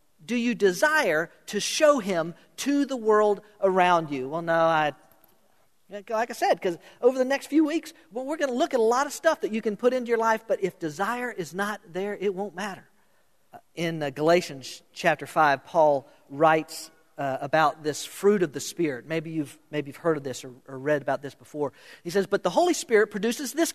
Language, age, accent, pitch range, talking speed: English, 50-69, American, 165-260 Hz, 210 wpm